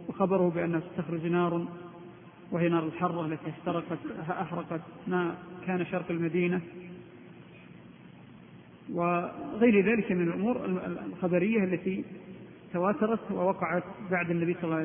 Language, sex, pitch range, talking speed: Arabic, male, 175-195 Hz, 110 wpm